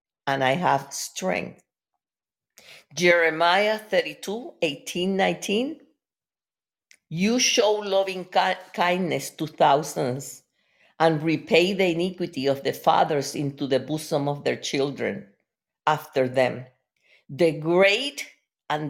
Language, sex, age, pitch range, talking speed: English, female, 50-69, 145-200 Hz, 105 wpm